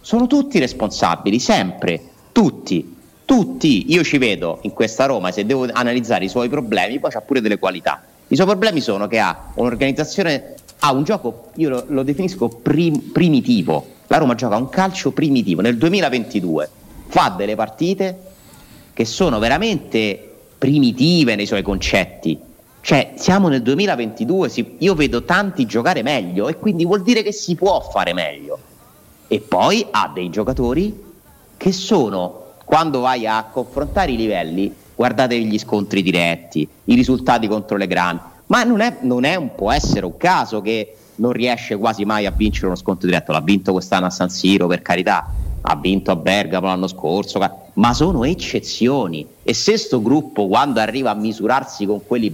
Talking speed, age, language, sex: 165 wpm, 30-49, Italian, male